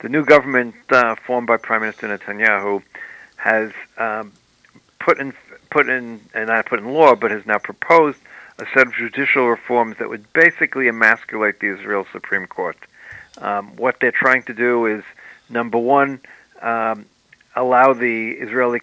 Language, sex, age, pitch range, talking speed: English, male, 50-69, 110-130 Hz, 160 wpm